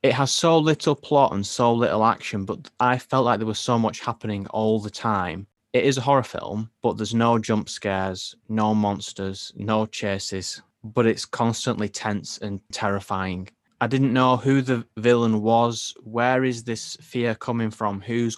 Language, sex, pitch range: English, male, 95-120 Hz